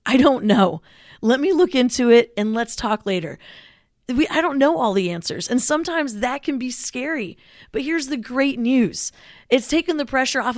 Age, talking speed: 30-49, 195 wpm